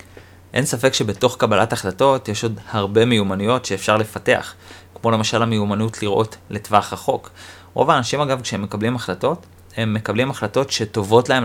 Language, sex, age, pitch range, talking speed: Hebrew, male, 30-49, 95-120 Hz, 145 wpm